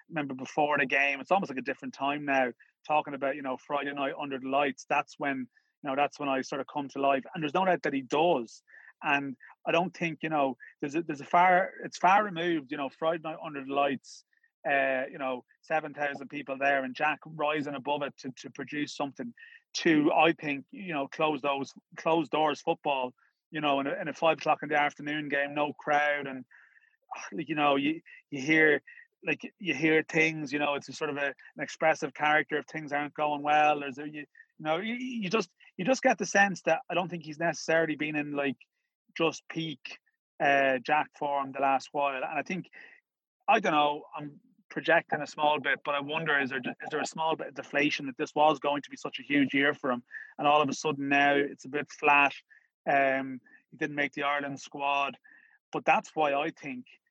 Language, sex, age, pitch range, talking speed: English, male, 30-49, 140-160 Hz, 225 wpm